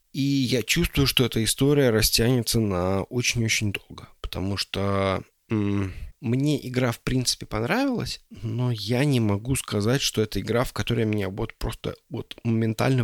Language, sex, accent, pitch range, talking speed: Russian, male, native, 105-125 Hz, 145 wpm